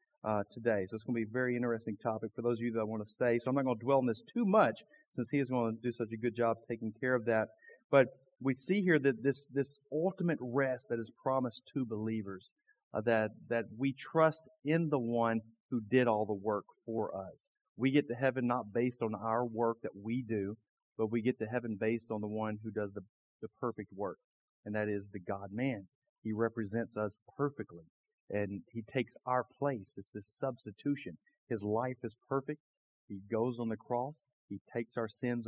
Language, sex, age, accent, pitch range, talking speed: English, male, 40-59, American, 110-135 Hz, 220 wpm